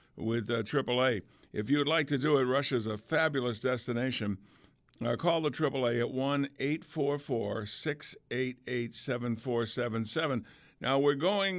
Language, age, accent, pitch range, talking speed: English, 60-79, American, 120-150 Hz, 115 wpm